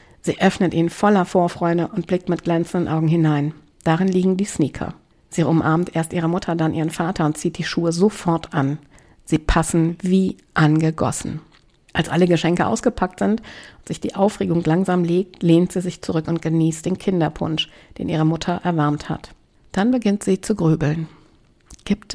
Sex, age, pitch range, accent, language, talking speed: female, 60-79, 160-200 Hz, German, German, 170 wpm